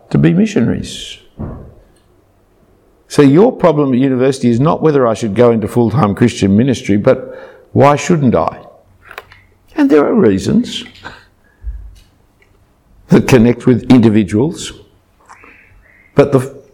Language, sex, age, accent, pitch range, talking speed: English, male, 60-79, Australian, 95-130 Hz, 115 wpm